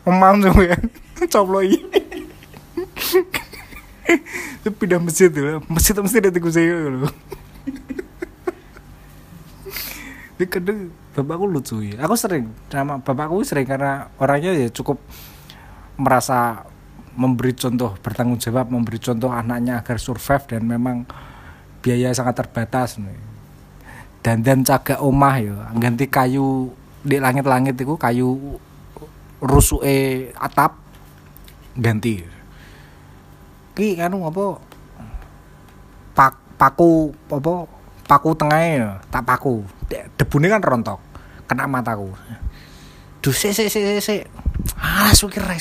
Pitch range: 120-175 Hz